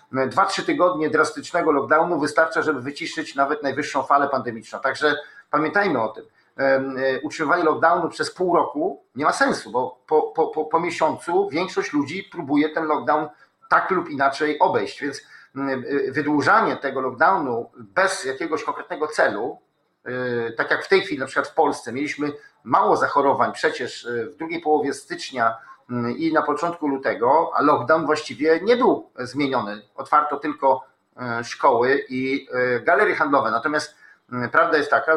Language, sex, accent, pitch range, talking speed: Polish, male, native, 135-160 Hz, 145 wpm